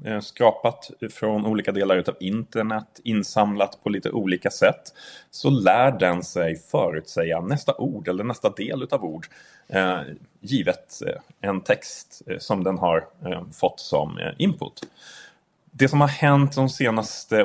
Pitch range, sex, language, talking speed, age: 100-135 Hz, male, Swedish, 130 wpm, 30-49